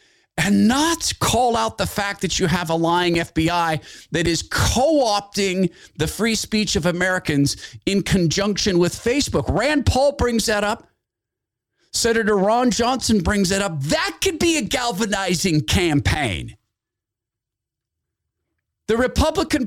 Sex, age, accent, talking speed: male, 40-59, American, 130 wpm